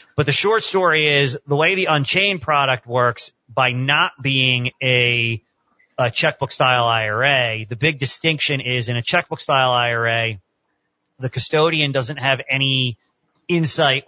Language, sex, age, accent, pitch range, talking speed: English, male, 40-59, American, 115-145 Hz, 135 wpm